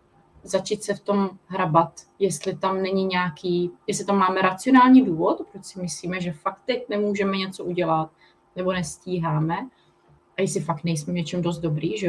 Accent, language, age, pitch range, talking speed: native, Czech, 30-49, 165-200 Hz, 170 wpm